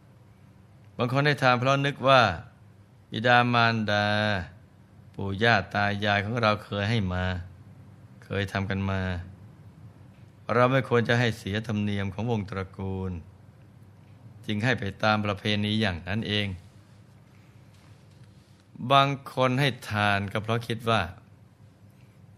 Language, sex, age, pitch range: Thai, male, 20-39, 100-115 Hz